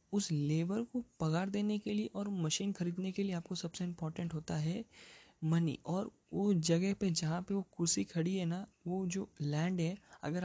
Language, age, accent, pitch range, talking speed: Hindi, 20-39, native, 155-185 Hz, 195 wpm